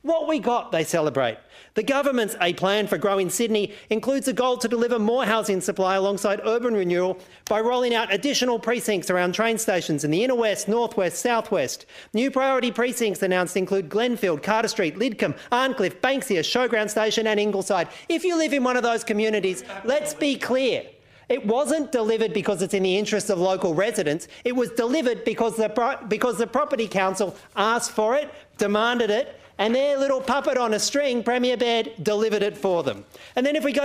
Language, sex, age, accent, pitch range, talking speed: English, male, 40-59, Australian, 200-250 Hz, 190 wpm